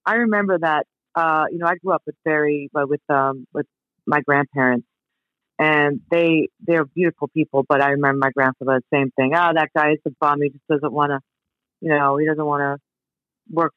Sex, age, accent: female, 40-59, American